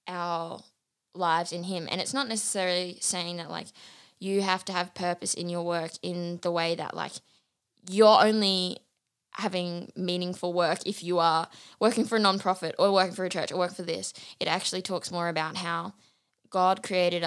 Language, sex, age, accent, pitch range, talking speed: English, female, 10-29, Australian, 175-195 Hz, 185 wpm